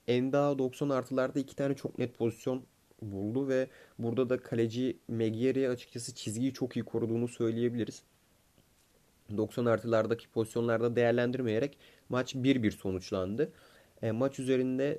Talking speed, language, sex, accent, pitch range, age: 130 wpm, Turkish, male, native, 115-130 Hz, 30-49